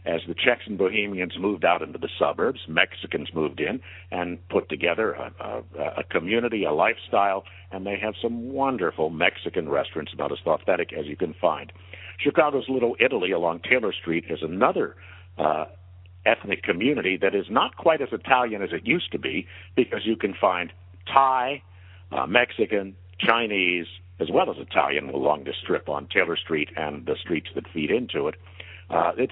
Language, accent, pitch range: English, American, 90-105 Hz